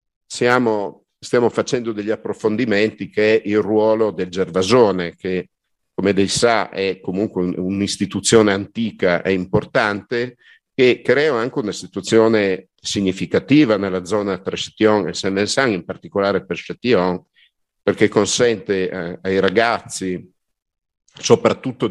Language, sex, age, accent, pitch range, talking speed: Italian, male, 50-69, native, 90-110 Hz, 120 wpm